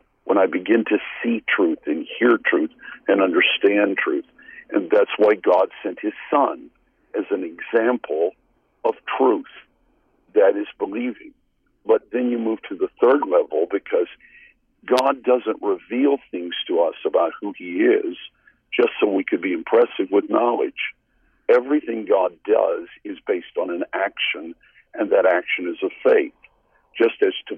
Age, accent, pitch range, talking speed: 60-79, American, 280-430 Hz, 155 wpm